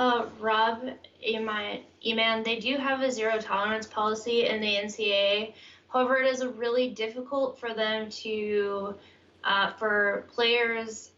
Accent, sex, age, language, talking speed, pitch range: American, female, 10-29, English, 125 wpm, 195-230 Hz